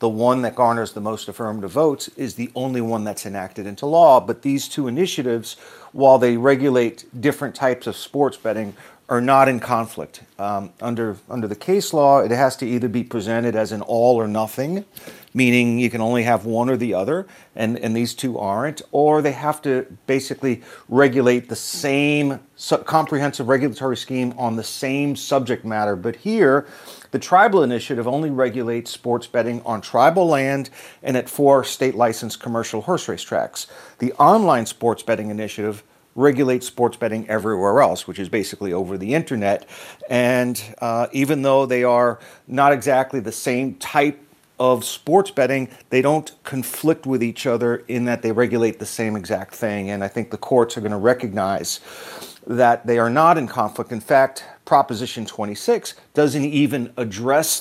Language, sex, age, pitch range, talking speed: English, male, 40-59, 115-140 Hz, 170 wpm